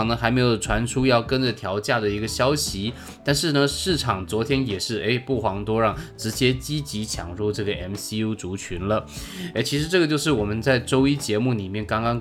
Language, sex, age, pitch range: Chinese, male, 20-39, 105-135 Hz